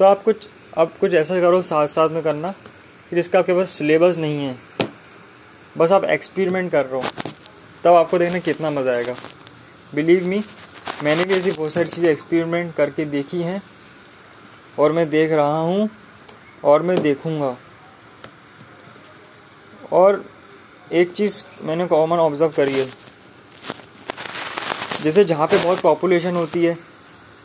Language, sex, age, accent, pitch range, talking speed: Hindi, male, 20-39, native, 145-175 Hz, 145 wpm